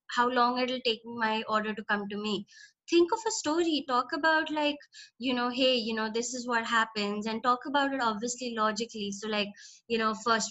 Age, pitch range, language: 20-39, 220-270 Hz, Hindi